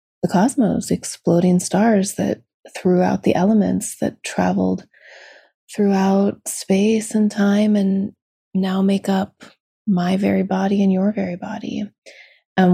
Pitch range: 170-205 Hz